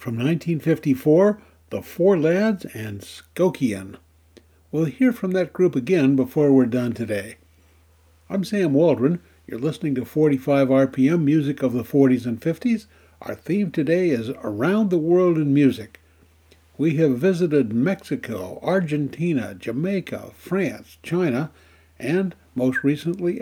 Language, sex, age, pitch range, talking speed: English, male, 60-79, 115-175 Hz, 130 wpm